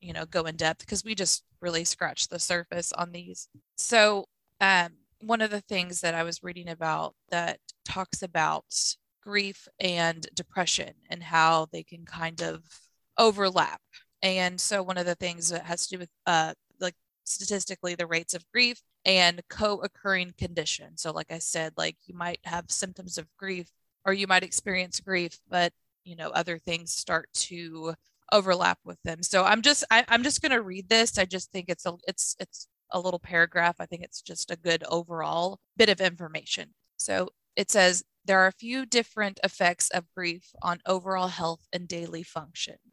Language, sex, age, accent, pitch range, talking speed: English, female, 20-39, American, 170-195 Hz, 185 wpm